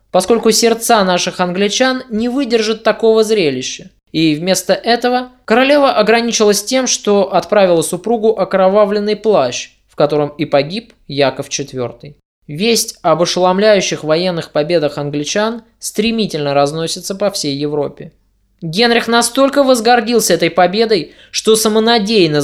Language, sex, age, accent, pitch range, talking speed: Russian, male, 20-39, native, 155-225 Hz, 115 wpm